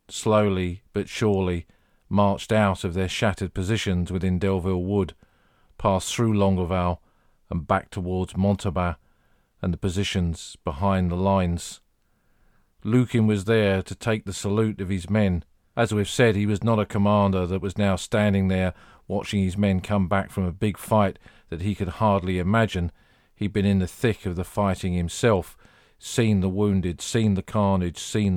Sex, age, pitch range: male, 40-59, 90-105 Hz